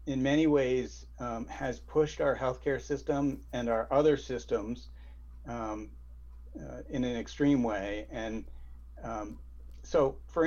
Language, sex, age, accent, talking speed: English, male, 40-59, American, 130 wpm